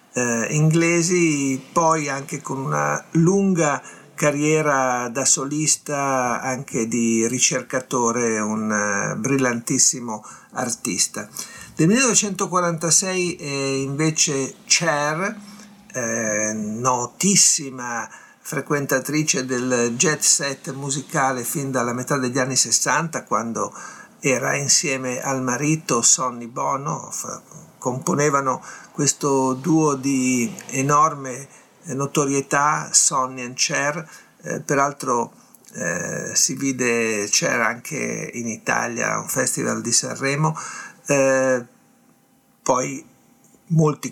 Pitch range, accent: 125-155 Hz, native